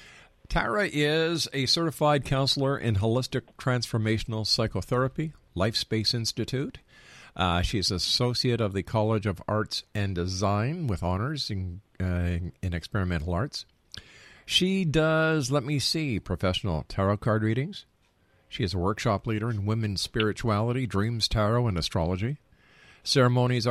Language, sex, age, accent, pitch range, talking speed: English, male, 50-69, American, 100-140 Hz, 130 wpm